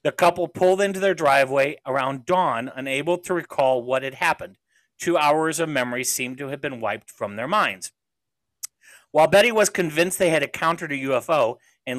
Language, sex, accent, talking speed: English, male, American, 180 wpm